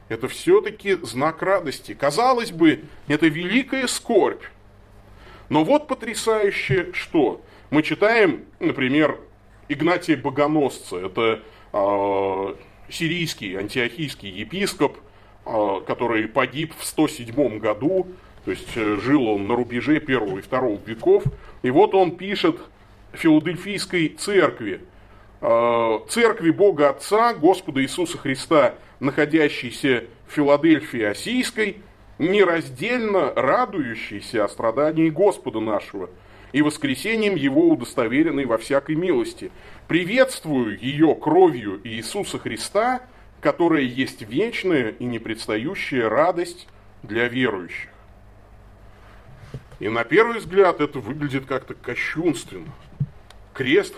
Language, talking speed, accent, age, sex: Russian, 100 wpm, native, 30-49, male